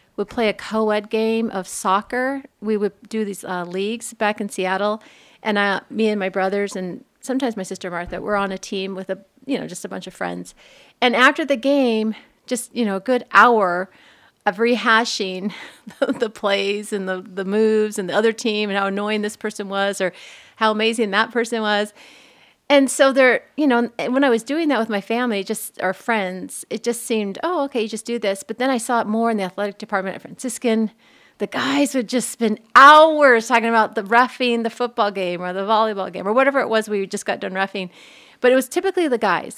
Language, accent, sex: English, American, female